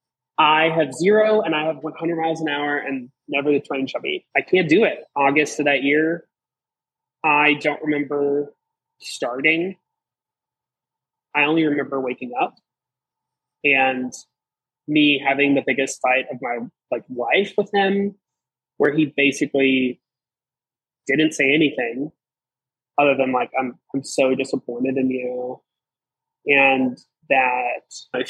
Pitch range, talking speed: 135-165 Hz, 130 wpm